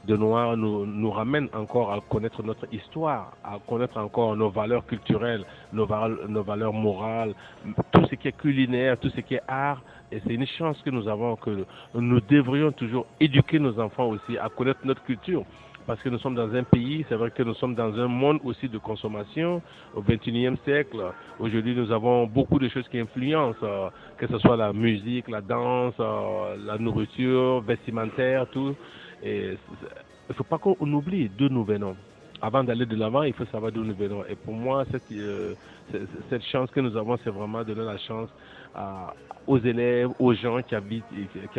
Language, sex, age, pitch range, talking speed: French, male, 50-69, 110-130 Hz, 190 wpm